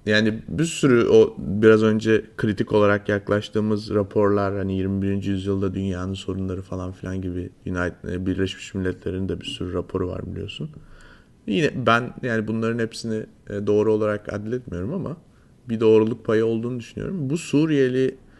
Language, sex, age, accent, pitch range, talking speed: Turkish, male, 30-49, native, 95-115 Hz, 135 wpm